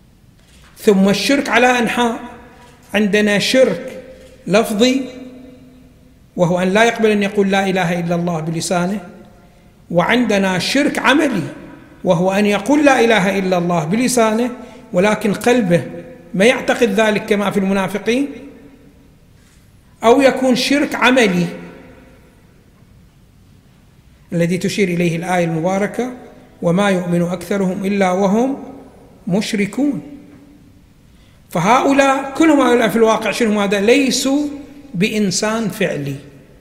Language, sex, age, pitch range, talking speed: Arabic, male, 60-79, 180-245 Hz, 100 wpm